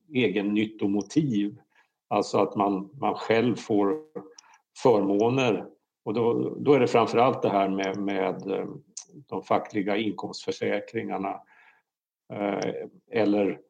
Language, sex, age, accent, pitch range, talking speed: Swedish, male, 50-69, Norwegian, 100-110 Hz, 100 wpm